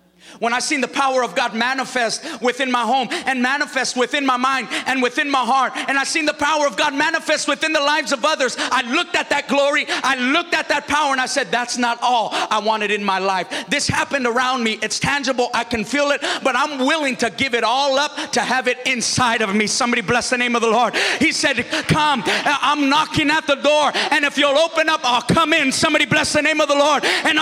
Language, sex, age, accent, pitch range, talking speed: English, male, 30-49, American, 190-290 Hz, 240 wpm